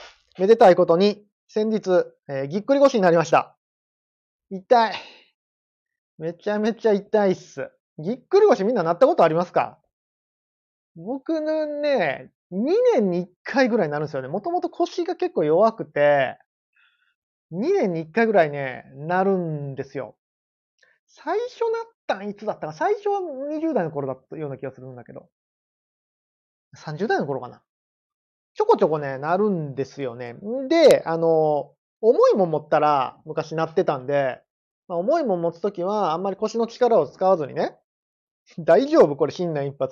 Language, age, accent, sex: Japanese, 30-49, native, male